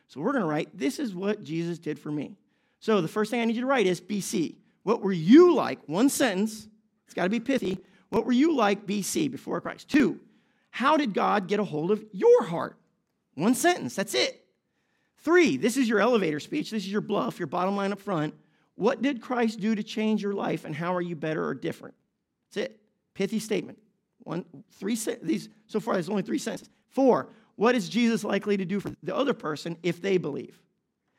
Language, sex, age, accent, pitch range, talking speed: English, male, 40-59, American, 180-235 Hz, 215 wpm